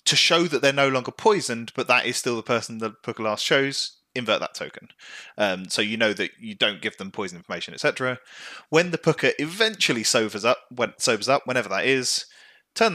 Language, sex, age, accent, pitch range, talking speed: English, male, 30-49, British, 110-145 Hz, 200 wpm